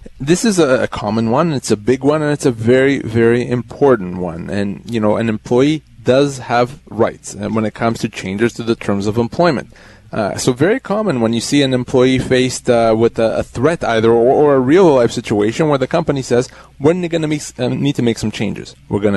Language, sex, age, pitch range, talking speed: English, male, 30-49, 110-140 Hz, 215 wpm